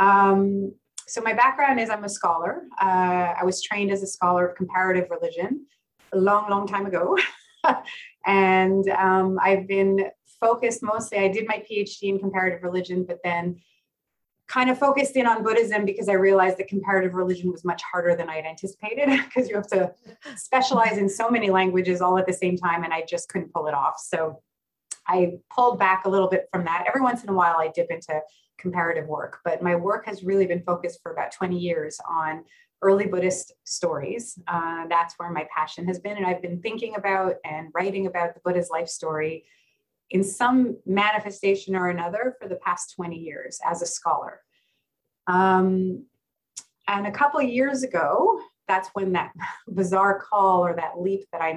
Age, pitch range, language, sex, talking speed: 30-49, 175-210 Hz, English, female, 185 wpm